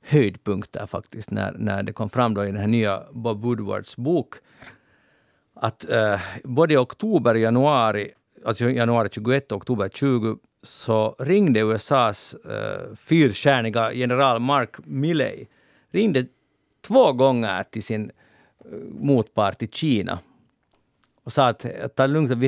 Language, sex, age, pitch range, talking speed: Swedish, male, 50-69, 105-135 Hz, 140 wpm